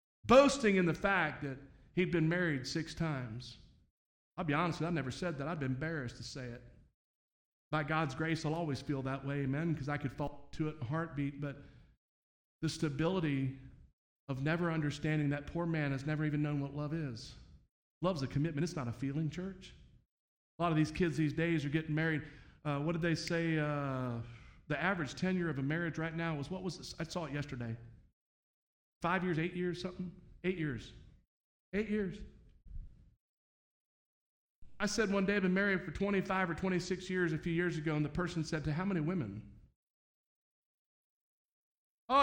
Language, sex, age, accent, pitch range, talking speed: English, male, 40-59, American, 145-200 Hz, 185 wpm